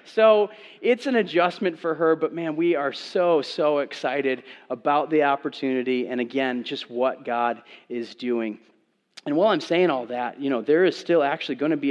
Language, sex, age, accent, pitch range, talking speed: English, male, 30-49, American, 130-175 Hz, 190 wpm